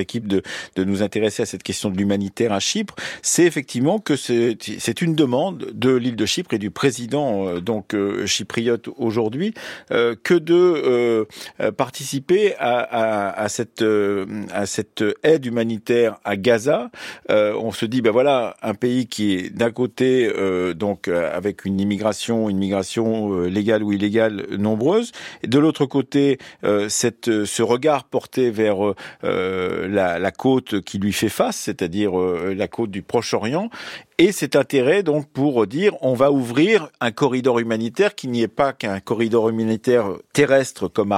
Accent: French